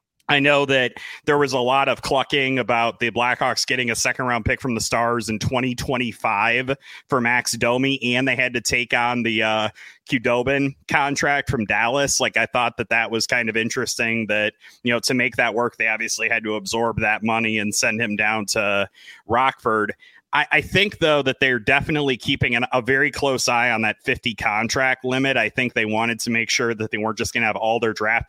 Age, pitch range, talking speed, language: 30-49, 115-130 Hz, 210 wpm, English